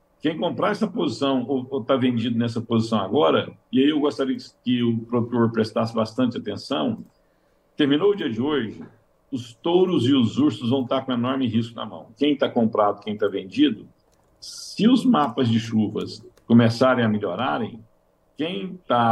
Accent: Brazilian